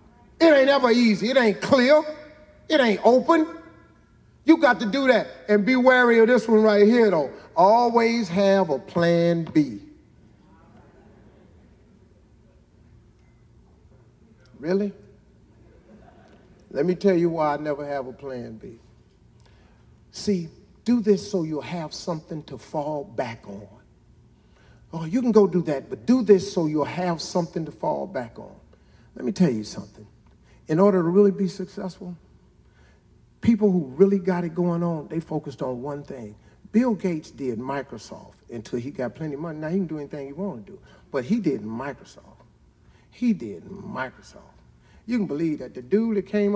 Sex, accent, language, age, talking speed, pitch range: male, American, English, 50-69, 160 wpm, 150-220 Hz